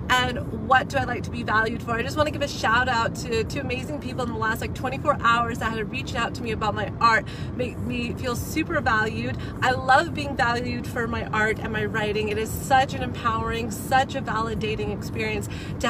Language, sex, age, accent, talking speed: English, female, 30-49, American, 230 wpm